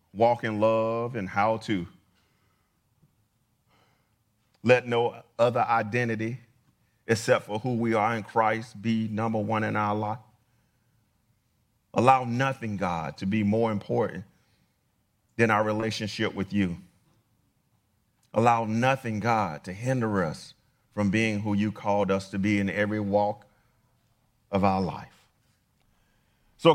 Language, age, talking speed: English, 40-59, 125 wpm